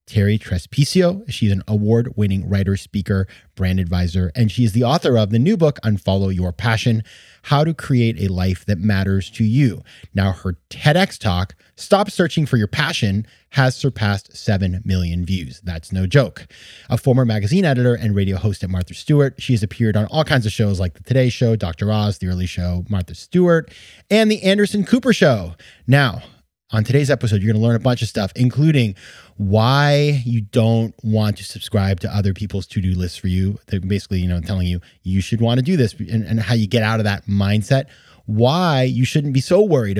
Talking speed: 200 wpm